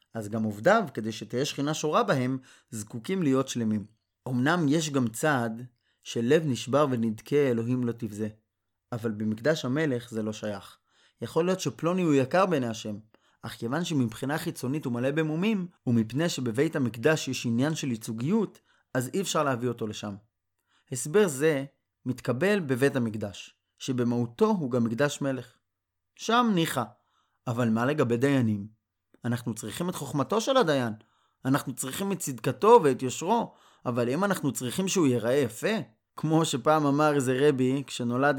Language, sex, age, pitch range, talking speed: Hebrew, male, 30-49, 115-160 Hz, 150 wpm